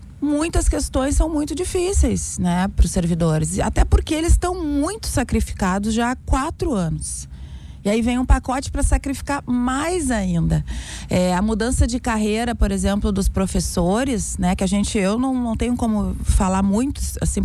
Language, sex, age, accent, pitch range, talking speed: Portuguese, female, 30-49, Brazilian, 185-250 Hz, 170 wpm